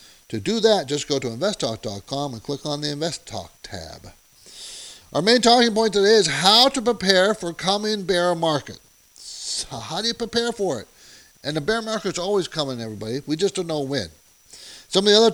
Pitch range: 125-205 Hz